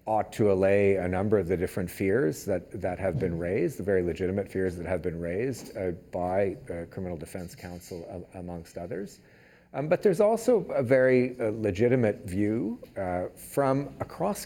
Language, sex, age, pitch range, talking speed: English, male, 40-59, 90-110 Hz, 180 wpm